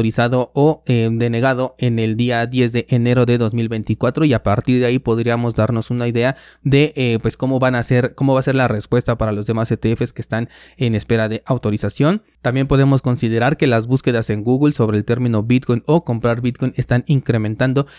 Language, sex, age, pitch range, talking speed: Spanish, male, 20-39, 115-130 Hz, 205 wpm